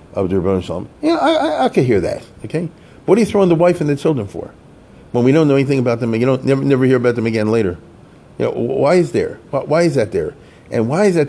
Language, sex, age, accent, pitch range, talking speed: English, male, 40-59, American, 100-140 Hz, 280 wpm